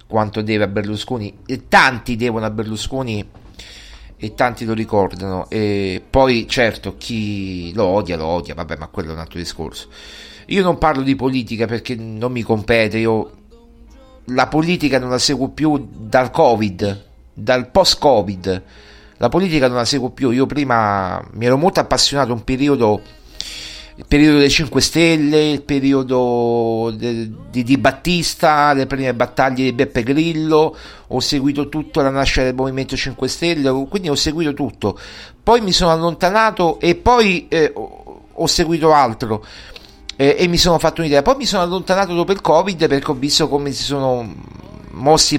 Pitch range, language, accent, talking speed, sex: 110-155 Hz, Italian, native, 160 wpm, male